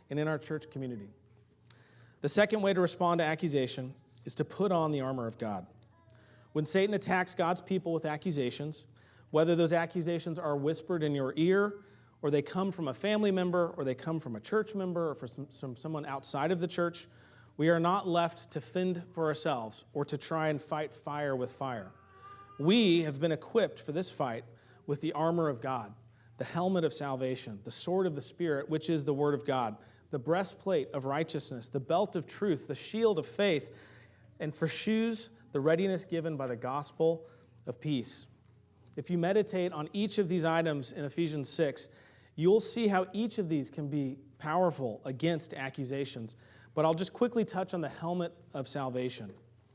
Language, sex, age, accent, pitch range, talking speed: English, male, 40-59, American, 130-175 Hz, 185 wpm